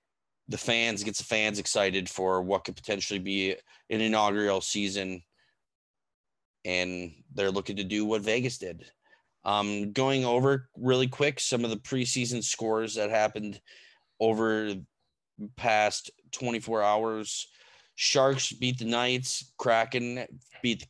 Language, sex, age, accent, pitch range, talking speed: English, male, 20-39, American, 100-120 Hz, 135 wpm